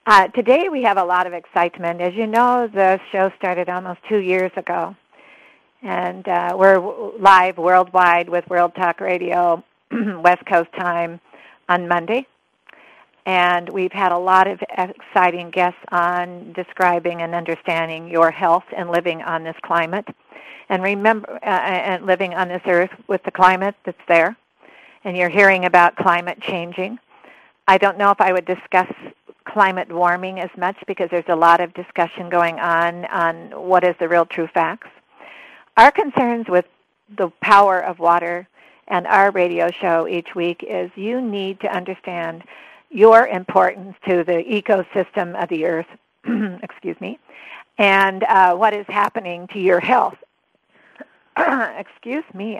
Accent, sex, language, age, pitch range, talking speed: American, female, English, 50-69, 175-200 Hz, 155 wpm